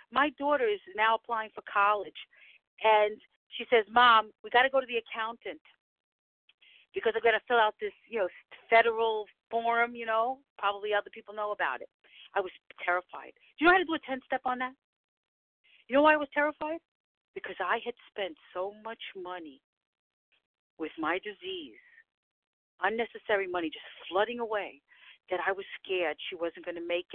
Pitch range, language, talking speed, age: 195-280 Hz, English, 175 wpm, 40-59